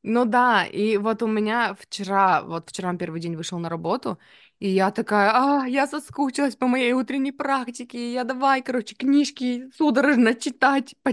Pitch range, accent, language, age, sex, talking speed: 170-255 Hz, native, Russian, 20-39, female, 165 wpm